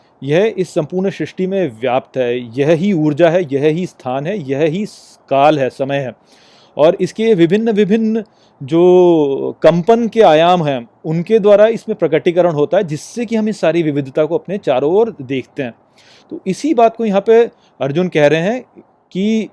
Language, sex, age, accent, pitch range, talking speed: Hindi, male, 30-49, native, 145-200 Hz, 170 wpm